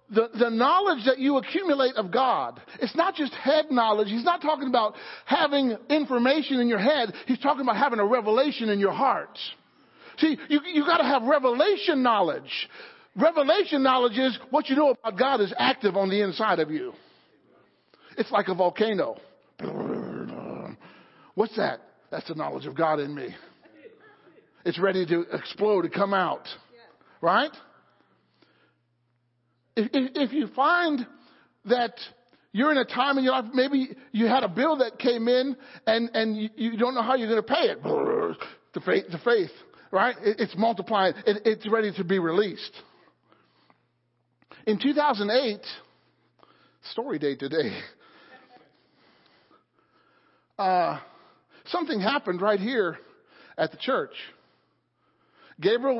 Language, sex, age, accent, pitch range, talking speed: English, male, 50-69, American, 205-285 Hz, 145 wpm